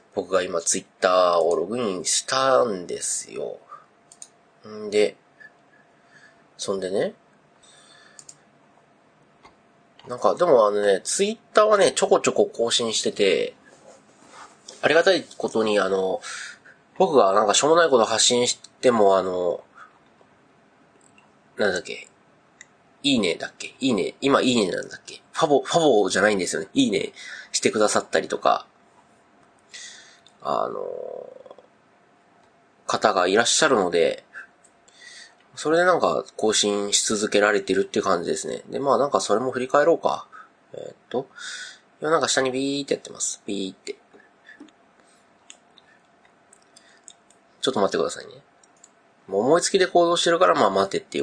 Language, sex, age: Japanese, male, 30-49